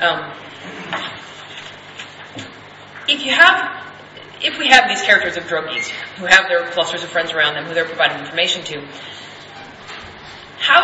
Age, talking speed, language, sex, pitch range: 20-39, 145 wpm, English, female, 170-220 Hz